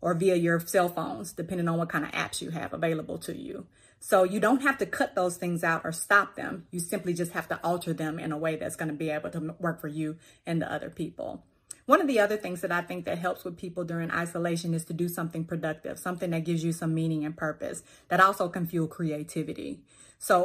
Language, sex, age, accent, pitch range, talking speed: English, female, 30-49, American, 165-185 Hz, 245 wpm